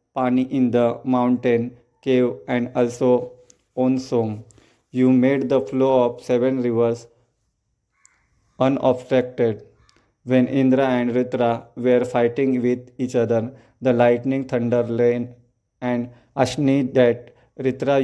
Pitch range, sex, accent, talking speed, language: 120-130 Hz, male, Indian, 110 wpm, English